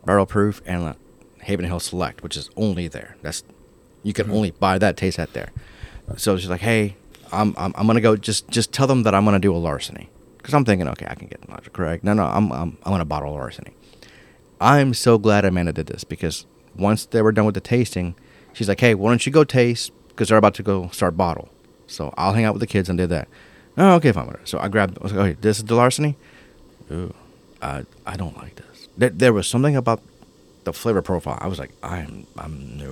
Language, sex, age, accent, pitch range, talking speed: English, male, 30-49, American, 80-110 Hz, 235 wpm